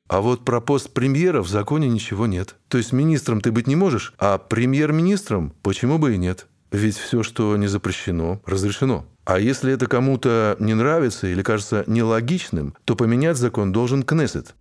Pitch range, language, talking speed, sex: 100-125 Hz, Russian, 175 wpm, male